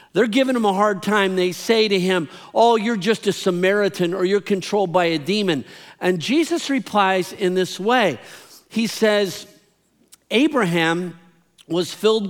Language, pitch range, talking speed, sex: English, 175-225 Hz, 155 wpm, male